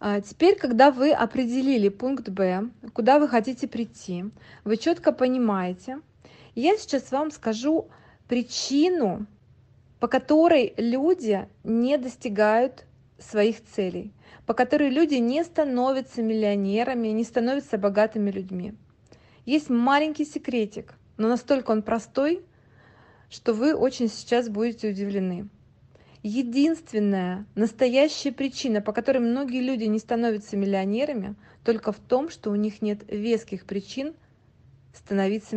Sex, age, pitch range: female, 20-39, 200-260 Hz